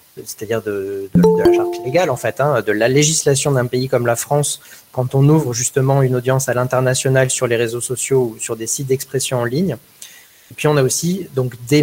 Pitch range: 120-150 Hz